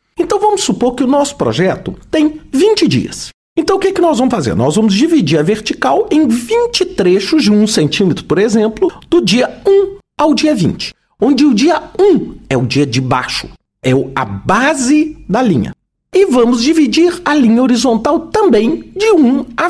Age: 50-69